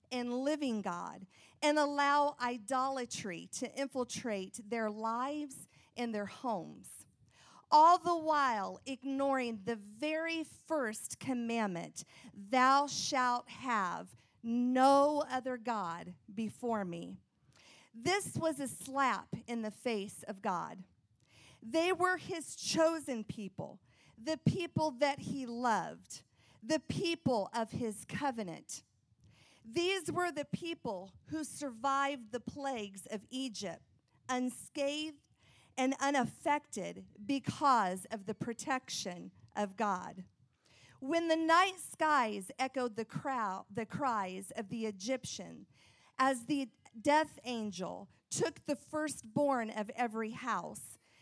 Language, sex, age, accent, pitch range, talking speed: English, female, 50-69, American, 215-285 Hz, 110 wpm